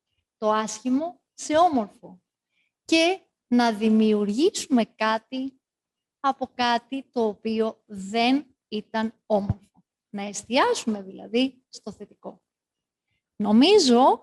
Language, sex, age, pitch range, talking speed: Greek, female, 30-49, 215-275 Hz, 90 wpm